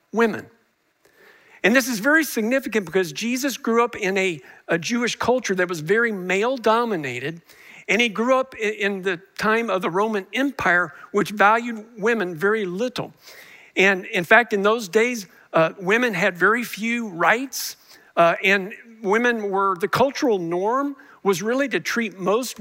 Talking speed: 160 wpm